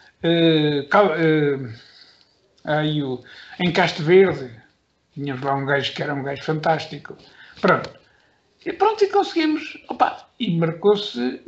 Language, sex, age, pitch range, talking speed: Portuguese, male, 60-79, 155-205 Hz, 125 wpm